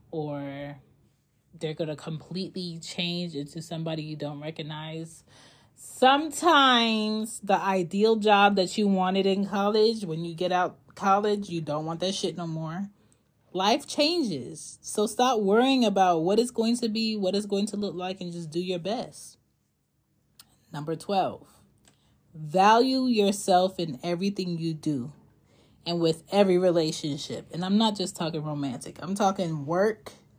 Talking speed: 150 wpm